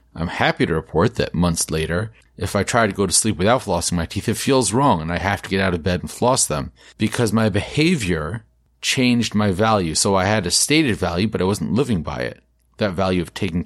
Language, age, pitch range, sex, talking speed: English, 30-49, 85-110 Hz, male, 235 wpm